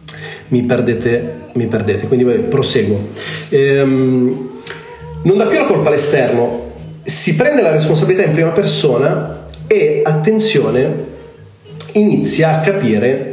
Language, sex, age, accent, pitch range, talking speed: Italian, male, 40-59, native, 125-160 Hz, 115 wpm